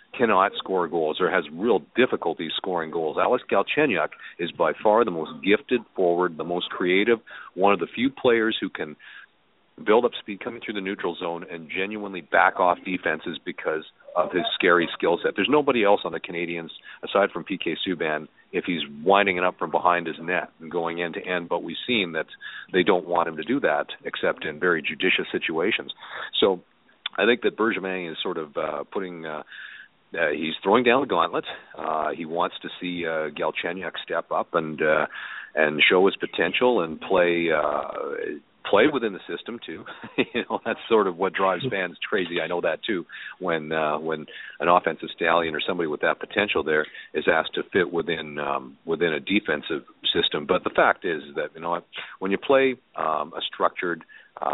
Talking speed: 190 wpm